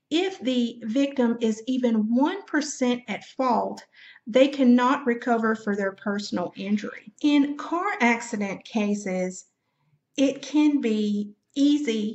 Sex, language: female, English